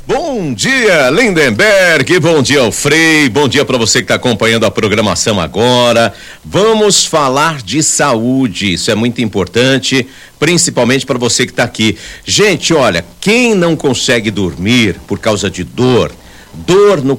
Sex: male